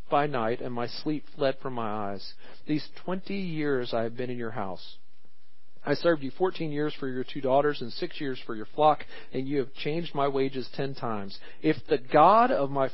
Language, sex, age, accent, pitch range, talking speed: English, male, 40-59, American, 135-185 Hz, 215 wpm